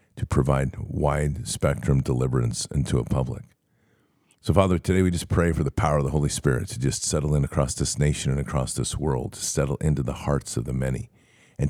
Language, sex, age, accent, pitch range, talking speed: English, male, 50-69, American, 70-85 Hz, 205 wpm